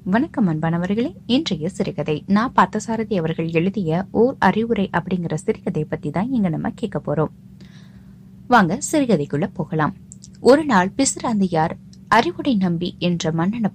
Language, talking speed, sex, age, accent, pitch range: Tamil, 105 wpm, female, 20-39, native, 170-235 Hz